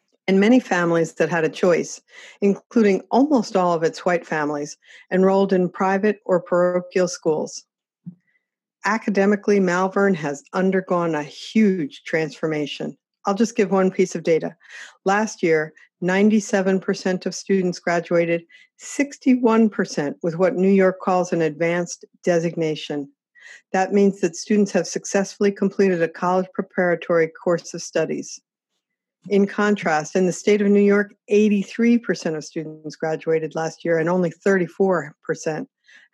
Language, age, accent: English, 50-69, American